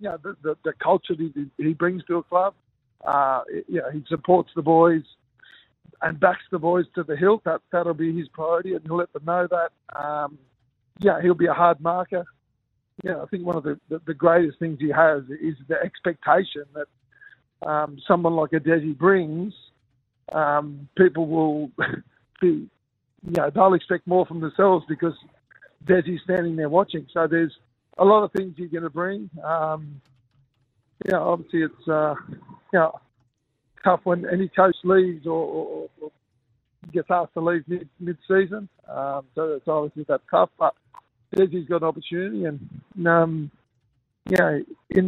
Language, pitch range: English, 145-180 Hz